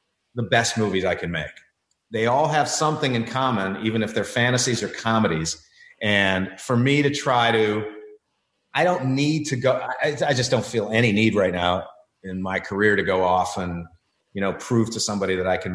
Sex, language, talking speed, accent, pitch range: male, English, 200 wpm, American, 105-135 Hz